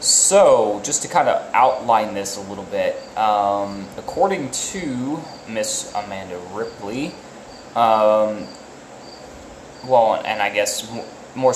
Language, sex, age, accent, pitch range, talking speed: English, male, 20-39, American, 100-120 Hz, 115 wpm